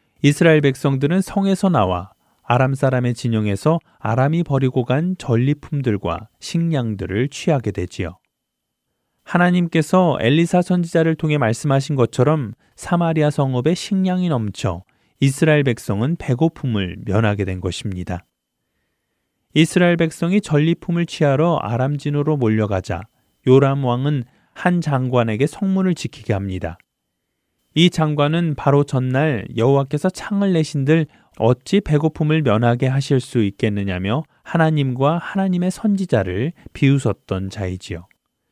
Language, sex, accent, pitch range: Korean, male, native, 110-160 Hz